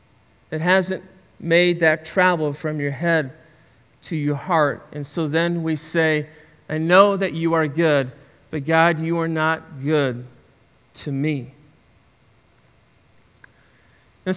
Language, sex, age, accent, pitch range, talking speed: English, male, 40-59, American, 150-190 Hz, 130 wpm